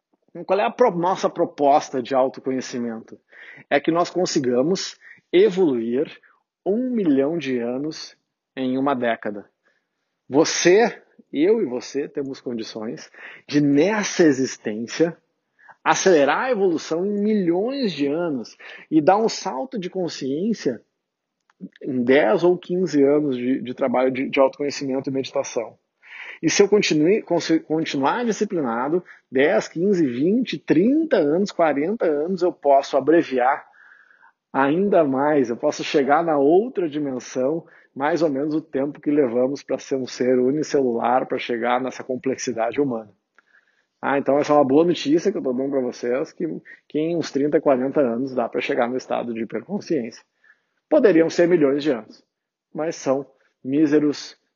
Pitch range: 130-175 Hz